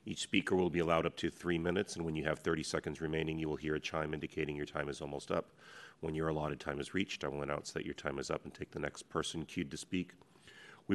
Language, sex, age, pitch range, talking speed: English, male, 40-59, 80-90 Hz, 275 wpm